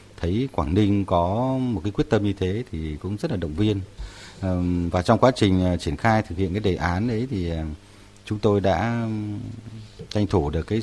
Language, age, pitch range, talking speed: Vietnamese, 30-49, 85-110 Hz, 200 wpm